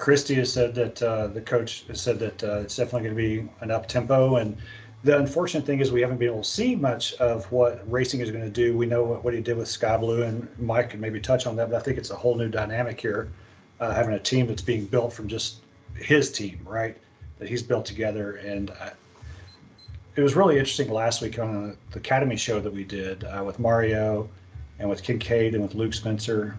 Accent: American